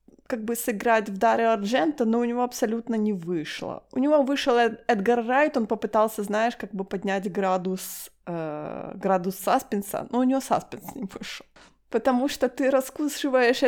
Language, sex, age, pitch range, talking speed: Ukrainian, female, 20-39, 195-250 Hz, 160 wpm